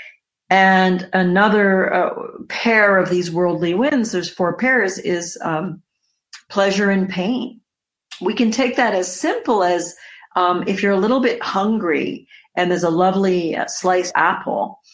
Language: English